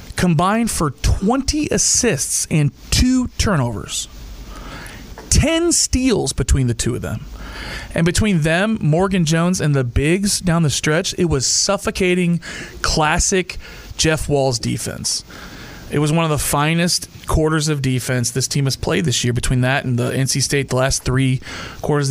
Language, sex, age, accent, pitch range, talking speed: English, male, 40-59, American, 130-185 Hz, 155 wpm